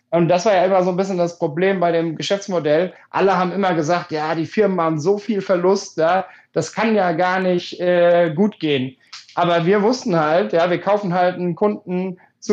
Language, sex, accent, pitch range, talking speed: German, male, German, 165-190 Hz, 210 wpm